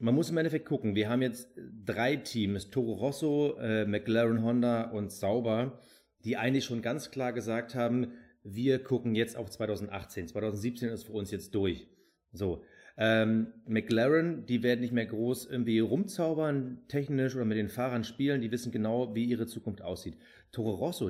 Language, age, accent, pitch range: German, 30-49, German, 110-130 Hz